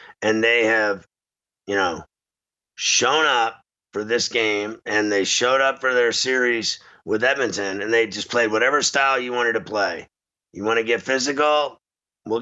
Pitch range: 115-140 Hz